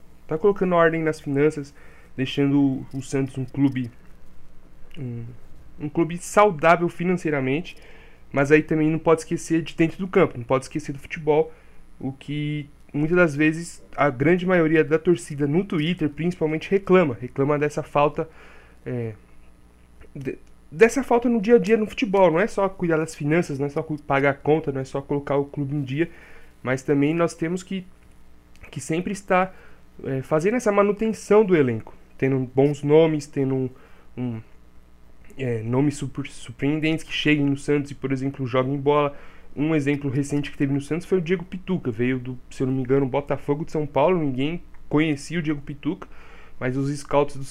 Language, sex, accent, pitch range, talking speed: Portuguese, male, Brazilian, 130-165 Hz, 175 wpm